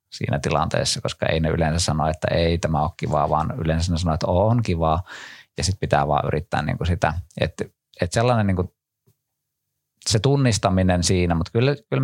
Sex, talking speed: male, 180 wpm